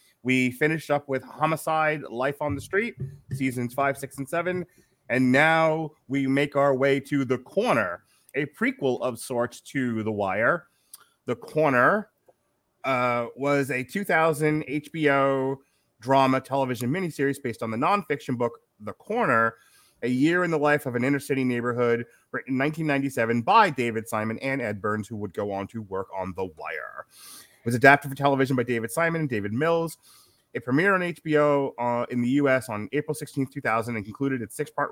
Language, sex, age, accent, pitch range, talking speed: English, male, 30-49, American, 115-145 Hz, 175 wpm